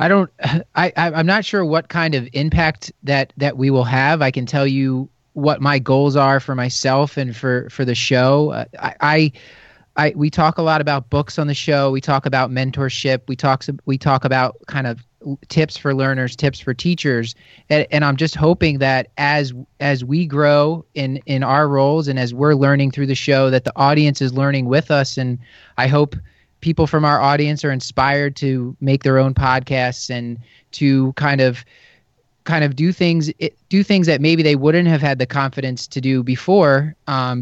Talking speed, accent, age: 195 wpm, American, 30-49